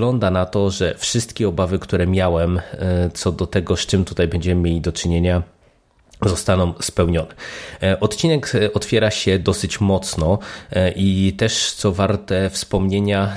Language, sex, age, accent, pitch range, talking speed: Polish, male, 20-39, native, 90-105 Hz, 135 wpm